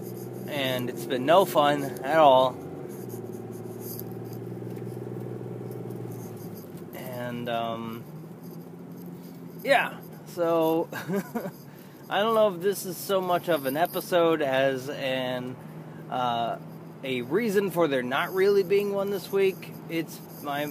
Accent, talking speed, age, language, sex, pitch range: American, 105 wpm, 20-39, English, male, 135-180 Hz